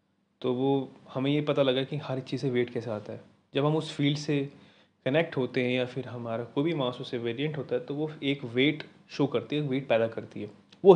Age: 20-39